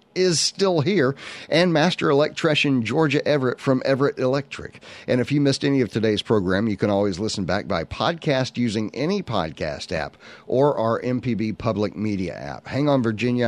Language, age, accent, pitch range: English, 50-69, American, 105-140 Hz